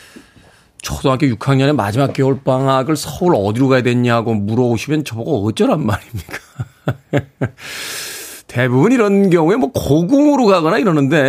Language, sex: Korean, male